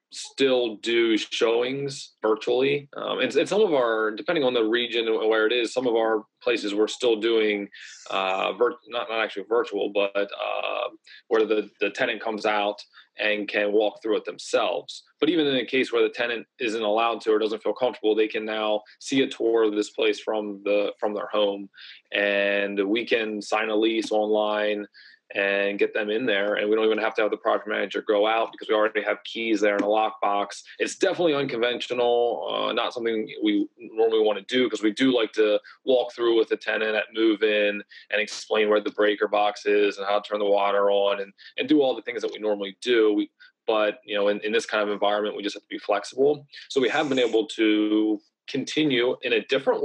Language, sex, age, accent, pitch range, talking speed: English, male, 20-39, American, 105-145 Hz, 220 wpm